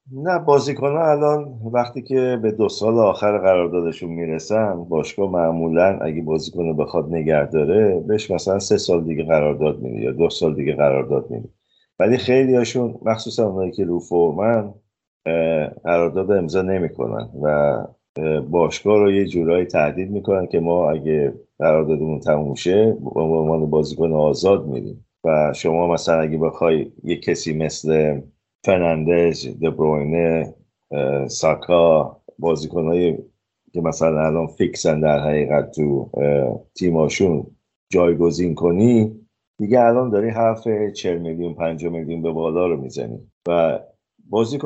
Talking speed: 130 wpm